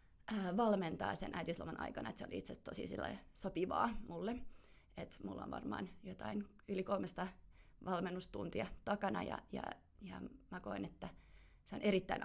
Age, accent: 20-39, native